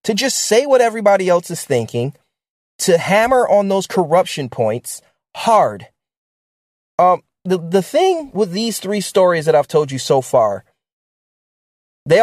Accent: American